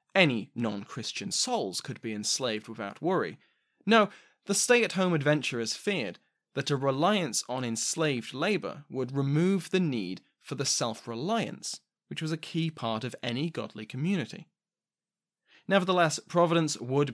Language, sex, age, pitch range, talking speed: English, male, 20-39, 115-160 Hz, 135 wpm